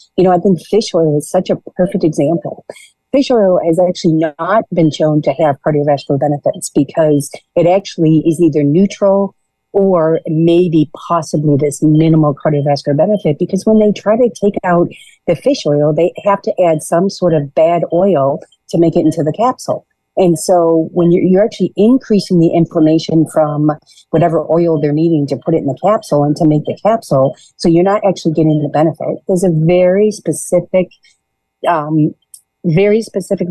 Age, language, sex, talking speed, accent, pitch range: 50-69, English, female, 175 wpm, American, 155-185 Hz